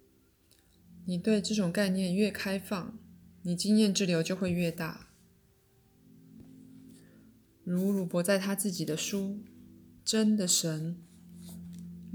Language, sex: Chinese, female